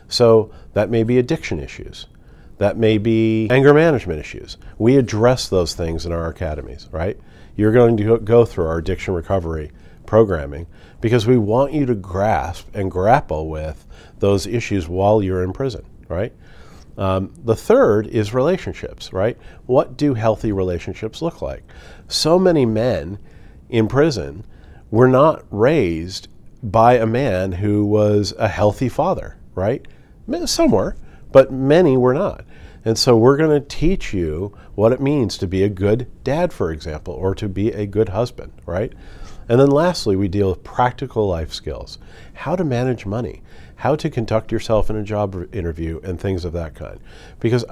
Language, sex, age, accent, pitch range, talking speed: English, male, 50-69, American, 90-125 Hz, 165 wpm